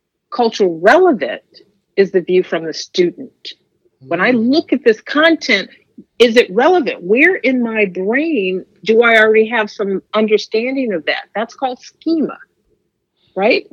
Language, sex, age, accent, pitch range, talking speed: English, female, 50-69, American, 185-265 Hz, 145 wpm